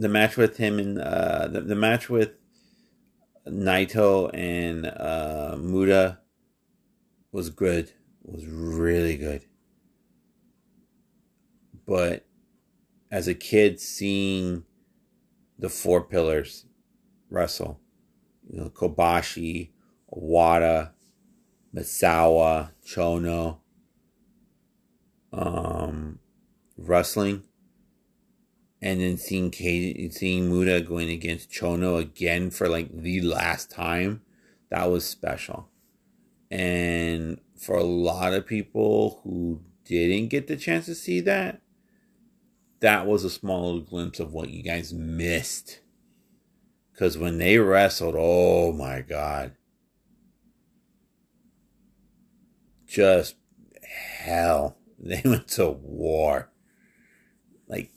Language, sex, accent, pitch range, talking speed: English, male, American, 85-110 Hz, 95 wpm